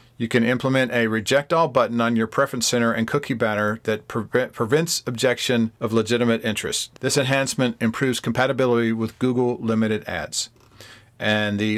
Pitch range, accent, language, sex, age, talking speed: 115-130 Hz, American, English, male, 40-59, 155 wpm